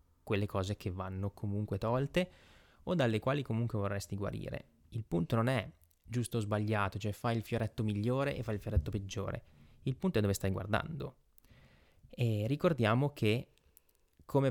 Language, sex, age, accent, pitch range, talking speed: Italian, male, 20-39, native, 100-120 Hz, 155 wpm